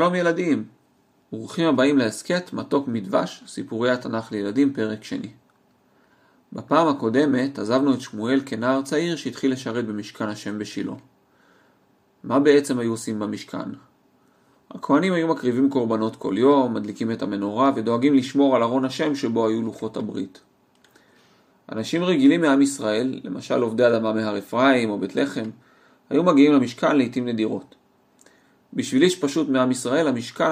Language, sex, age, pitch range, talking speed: English, male, 40-59, 115-140 Hz, 130 wpm